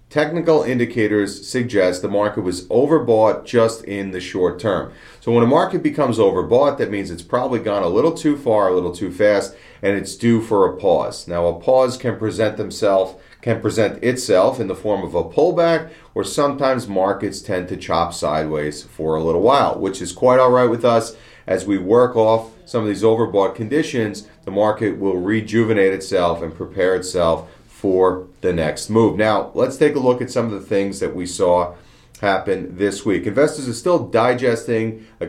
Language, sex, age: English, male, 40-59